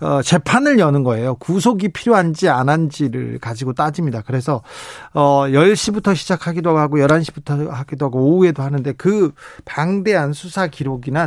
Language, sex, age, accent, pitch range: Korean, male, 40-59, native, 140-190 Hz